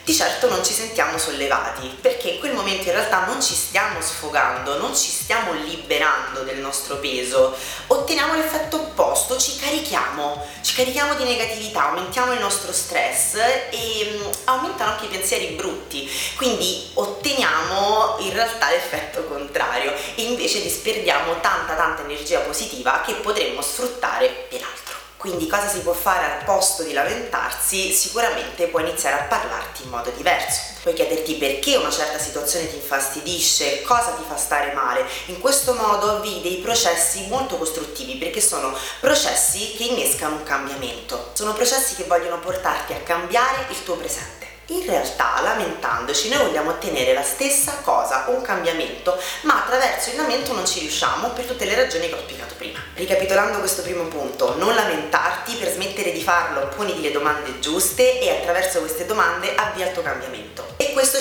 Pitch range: 180-270 Hz